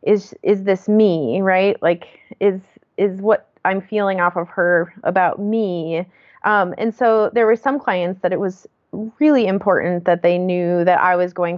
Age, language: 20-39, English